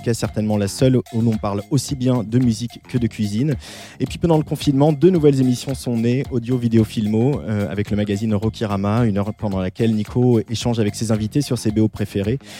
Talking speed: 215 wpm